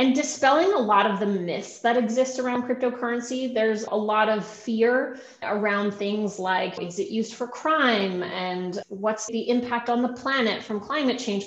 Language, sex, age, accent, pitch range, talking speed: English, female, 30-49, American, 200-260 Hz, 180 wpm